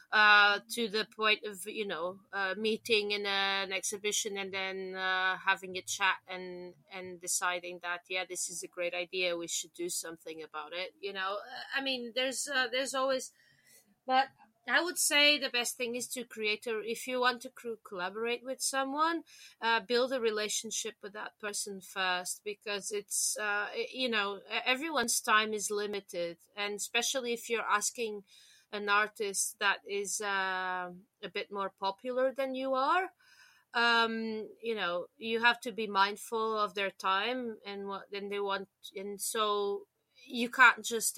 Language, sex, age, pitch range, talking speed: English, female, 30-49, 190-245 Hz, 170 wpm